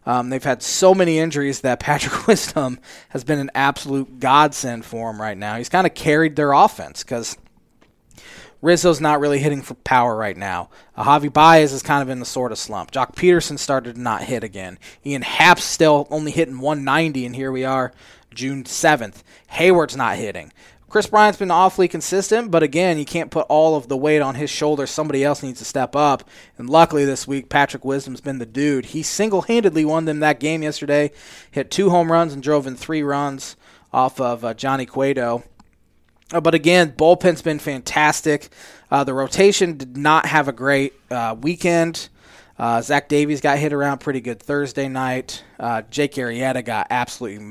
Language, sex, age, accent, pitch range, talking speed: English, male, 20-39, American, 130-160 Hz, 190 wpm